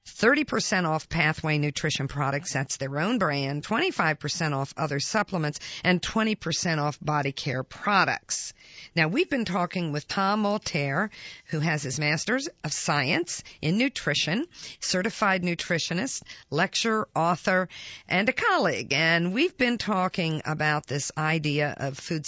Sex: female